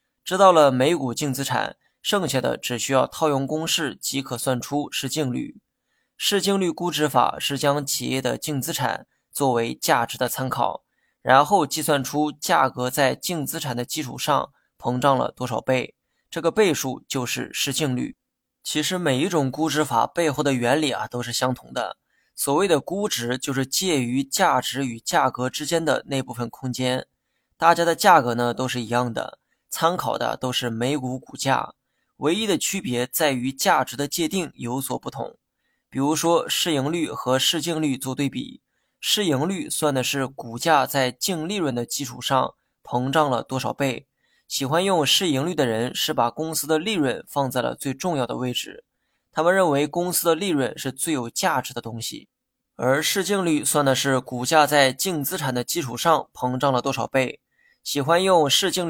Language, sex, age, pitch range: Chinese, male, 20-39, 125-160 Hz